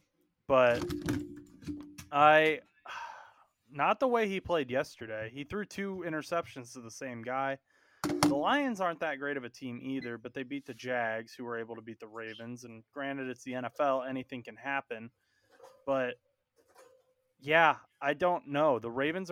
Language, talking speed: English, 160 wpm